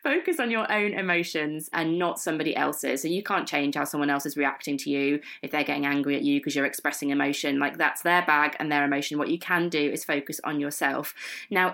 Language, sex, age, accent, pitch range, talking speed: English, female, 20-39, British, 150-190 Hz, 235 wpm